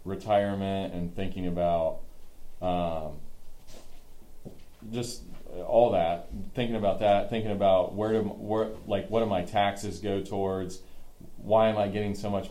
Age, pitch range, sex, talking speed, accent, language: 30-49, 90-105 Hz, male, 140 wpm, American, English